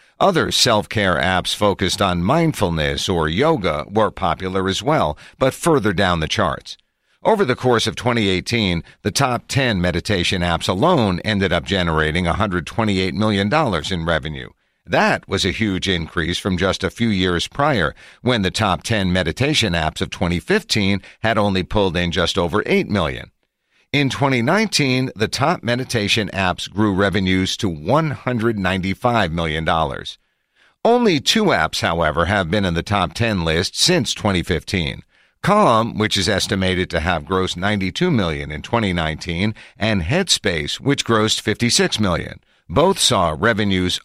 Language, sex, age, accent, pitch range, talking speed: English, male, 50-69, American, 90-115 Hz, 145 wpm